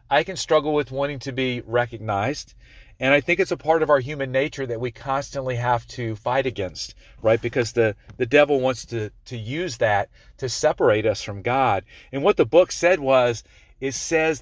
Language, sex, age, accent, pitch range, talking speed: English, male, 40-59, American, 115-155 Hz, 200 wpm